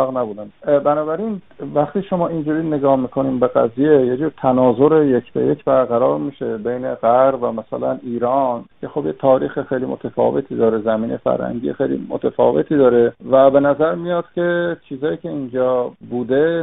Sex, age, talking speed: male, 50-69, 150 wpm